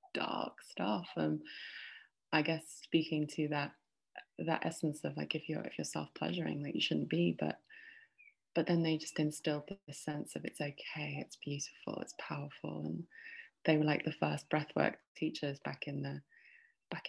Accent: British